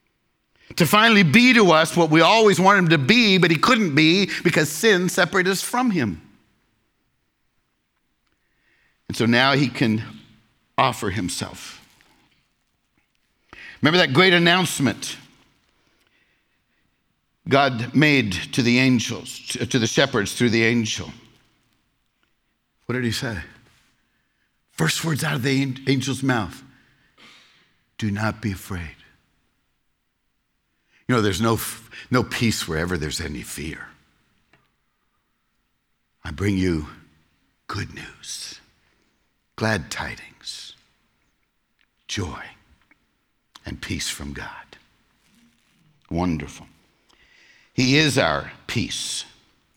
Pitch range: 115-165 Hz